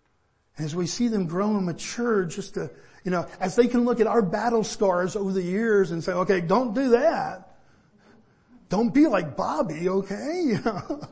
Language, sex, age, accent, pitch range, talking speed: English, male, 50-69, American, 165-210 Hz, 180 wpm